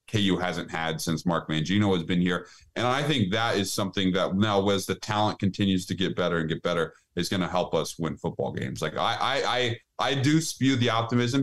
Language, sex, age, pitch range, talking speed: English, male, 20-39, 100-125 Hz, 230 wpm